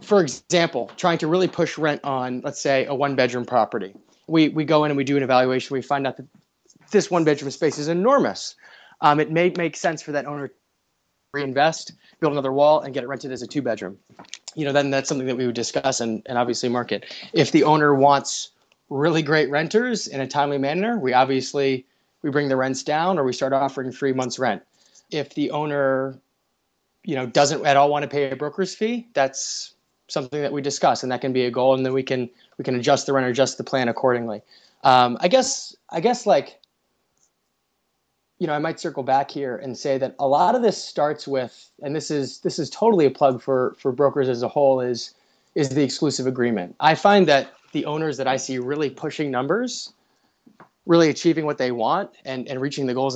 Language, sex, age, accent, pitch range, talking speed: English, male, 30-49, American, 130-155 Hz, 220 wpm